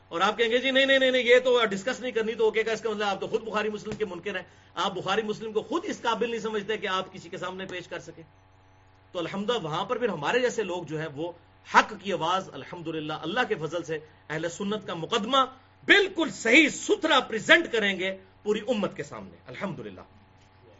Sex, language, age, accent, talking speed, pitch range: male, English, 40-59, Indian, 190 wpm, 150-225 Hz